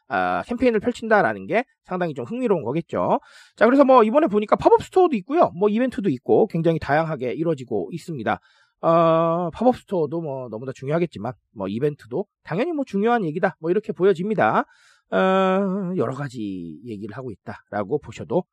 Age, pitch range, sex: 30-49, 155-250 Hz, male